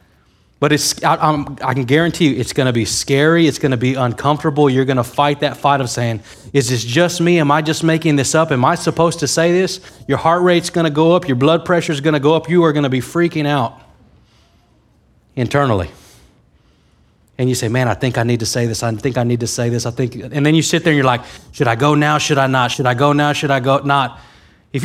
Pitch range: 120-155 Hz